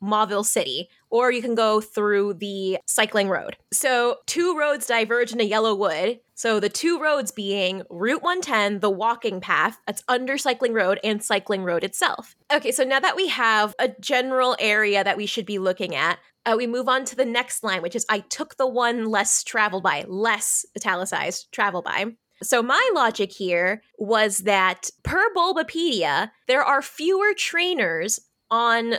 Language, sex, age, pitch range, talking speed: English, female, 20-39, 200-260 Hz, 175 wpm